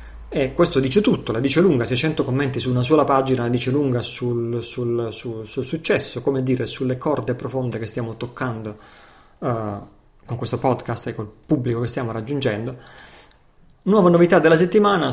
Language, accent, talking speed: Italian, native, 160 wpm